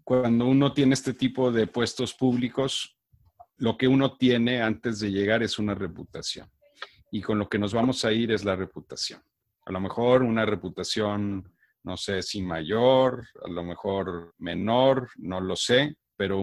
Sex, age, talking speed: male, 40-59, 170 wpm